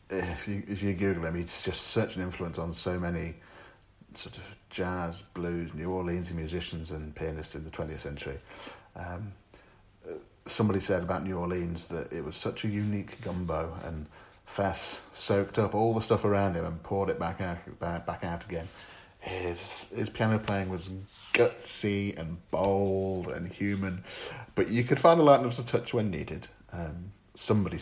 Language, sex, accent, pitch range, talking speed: English, male, British, 85-105 Hz, 170 wpm